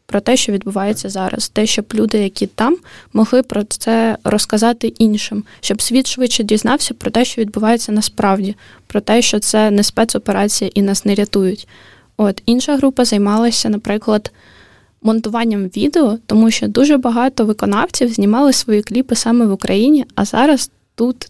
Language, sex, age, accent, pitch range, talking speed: Ukrainian, female, 10-29, native, 210-235 Hz, 155 wpm